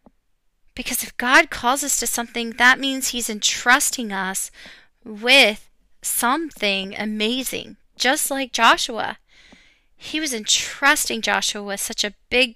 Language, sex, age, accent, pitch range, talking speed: English, female, 20-39, American, 210-245 Hz, 125 wpm